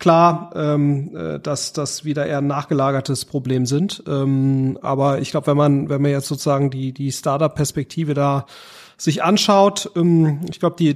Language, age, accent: German, 30-49, German